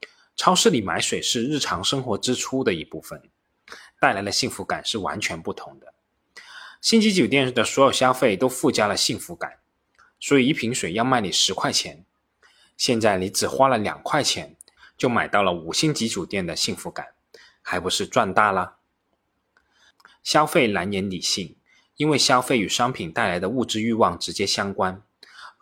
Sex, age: male, 20-39